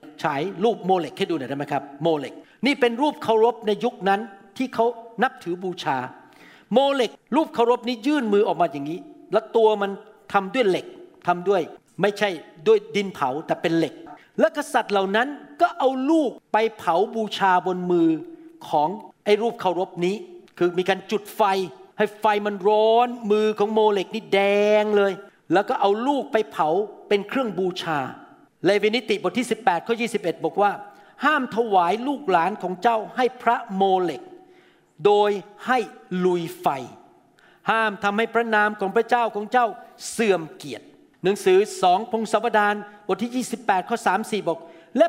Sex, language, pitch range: male, Thai, 195-255 Hz